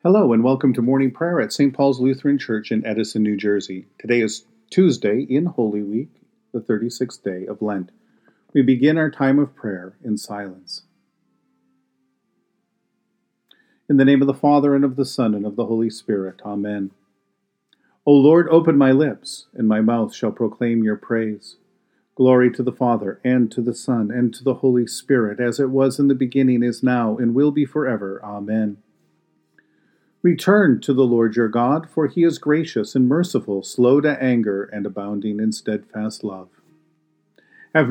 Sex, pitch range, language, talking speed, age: male, 110-140 Hz, English, 175 wpm, 50-69